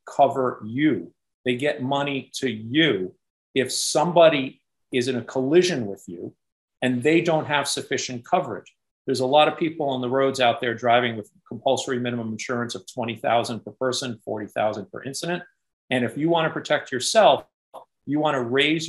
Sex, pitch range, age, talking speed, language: male, 120-140 Hz, 50-69, 170 wpm, English